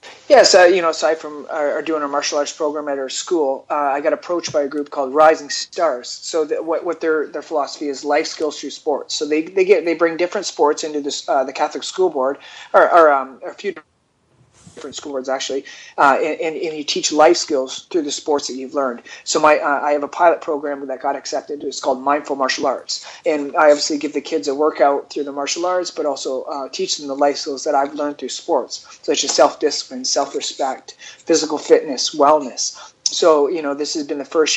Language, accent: English, American